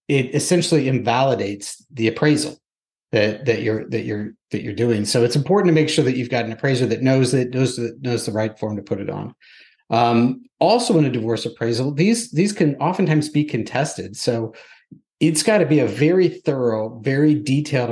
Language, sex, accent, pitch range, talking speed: English, male, American, 115-150 Hz, 200 wpm